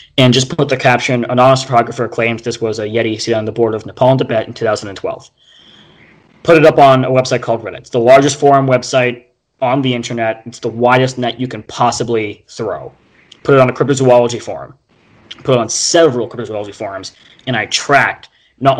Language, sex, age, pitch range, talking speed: English, male, 20-39, 115-135 Hz, 200 wpm